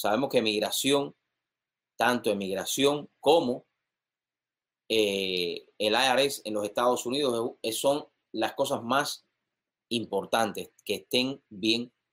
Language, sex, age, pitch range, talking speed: English, male, 30-49, 110-145 Hz, 105 wpm